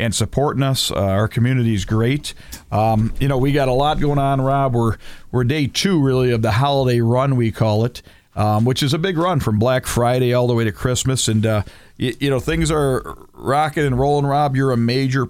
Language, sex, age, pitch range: Japanese, male, 40-59, 105-130 Hz